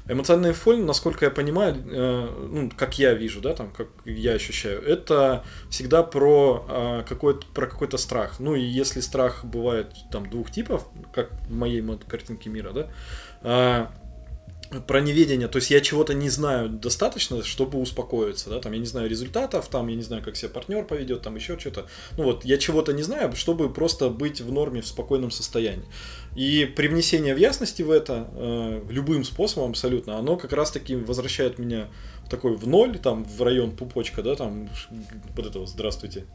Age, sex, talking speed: 20-39, male, 175 wpm